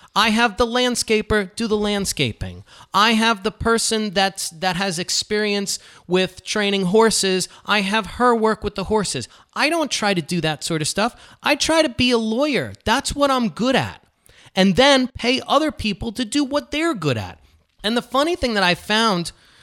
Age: 30-49